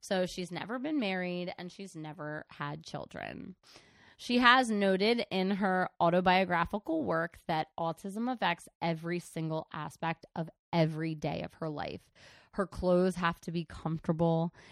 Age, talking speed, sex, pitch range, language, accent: 20-39, 145 wpm, female, 160-190 Hz, English, American